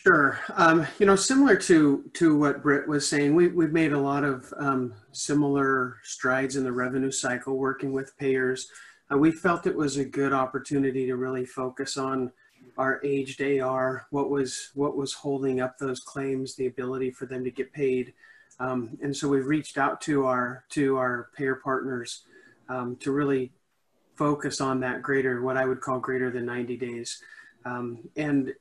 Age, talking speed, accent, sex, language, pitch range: 40-59, 180 wpm, American, male, English, 125-140 Hz